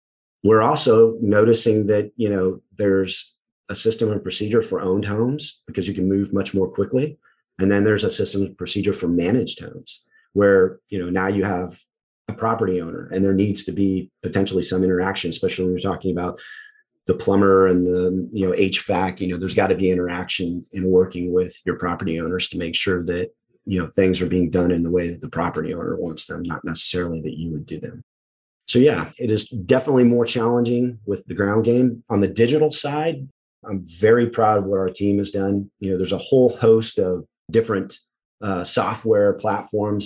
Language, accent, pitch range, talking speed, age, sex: English, American, 90-105 Hz, 200 wpm, 30-49, male